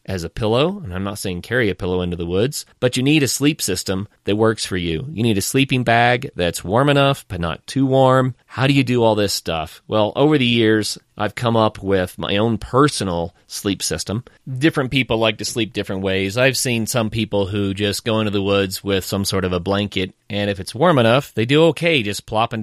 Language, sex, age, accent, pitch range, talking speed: English, male, 30-49, American, 95-120 Hz, 235 wpm